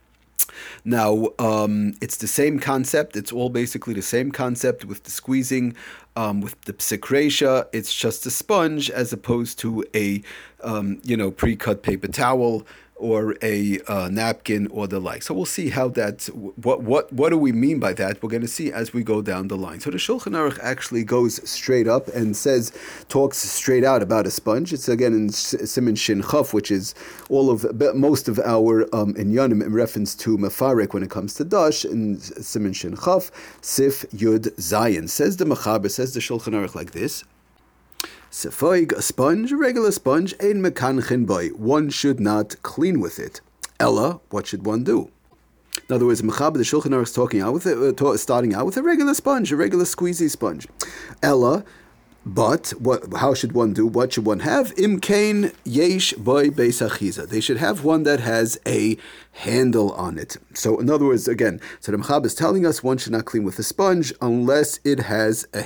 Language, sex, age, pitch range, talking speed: English, male, 40-59, 105-135 Hz, 190 wpm